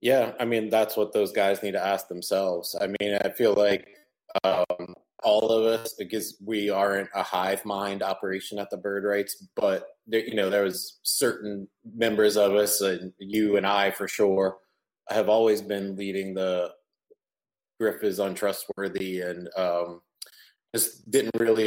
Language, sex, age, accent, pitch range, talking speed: English, male, 30-49, American, 95-105 Hz, 165 wpm